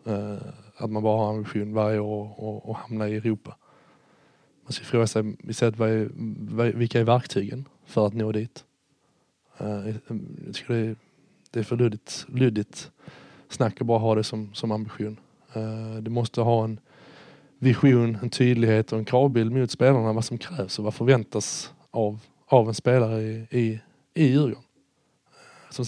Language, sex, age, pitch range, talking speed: English, male, 20-39, 110-130 Hz, 140 wpm